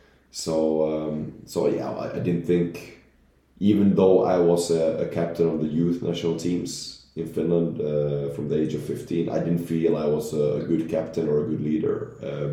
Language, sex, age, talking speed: English, male, 30-49, 195 wpm